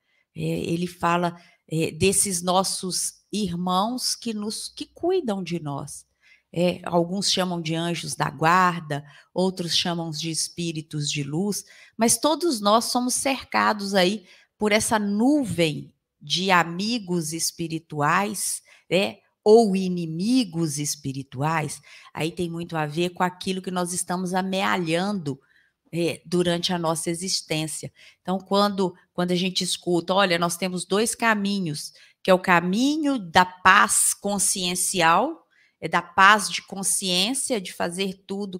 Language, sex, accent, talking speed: Portuguese, female, Brazilian, 130 wpm